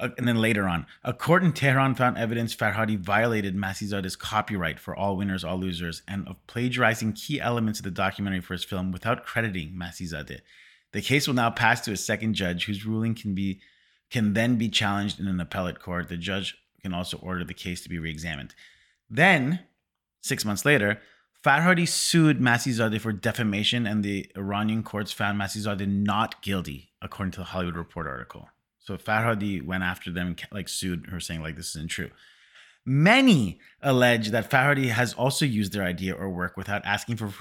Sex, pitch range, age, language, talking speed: male, 95-120 Hz, 30-49, English, 185 wpm